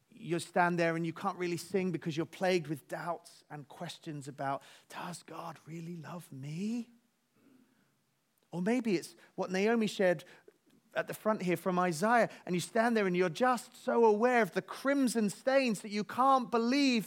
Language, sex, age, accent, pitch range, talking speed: English, male, 30-49, British, 130-200 Hz, 175 wpm